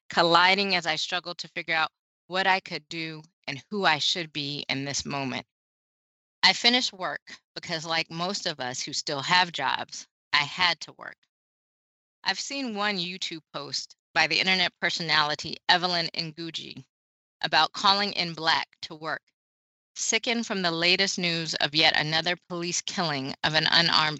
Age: 20-39